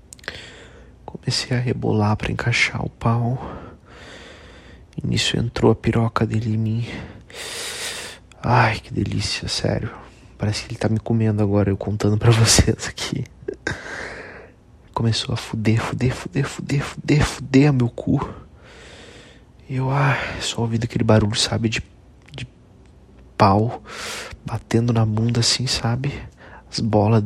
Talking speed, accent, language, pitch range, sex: 130 wpm, Brazilian, Portuguese, 110-125 Hz, male